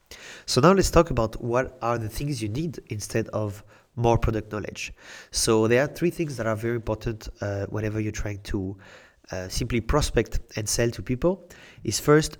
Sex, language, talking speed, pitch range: male, English, 190 wpm, 110-125 Hz